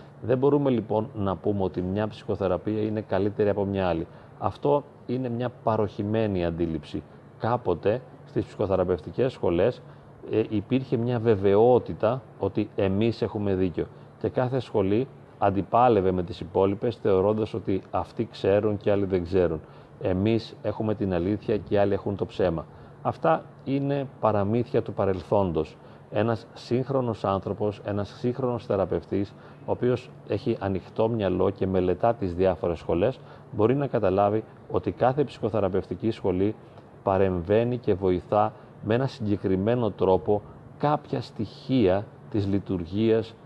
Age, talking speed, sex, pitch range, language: 30-49, 130 wpm, male, 95-120 Hz, Greek